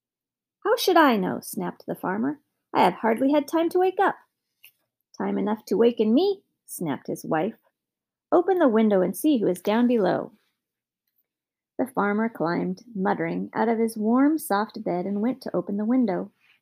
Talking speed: 175 wpm